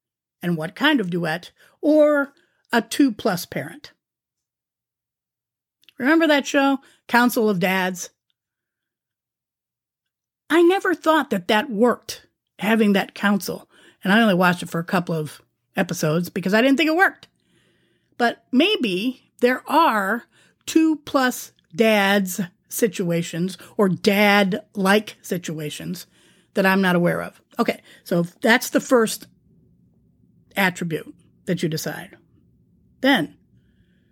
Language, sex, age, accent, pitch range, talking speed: English, female, 40-59, American, 175-240 Hz, 120 wpm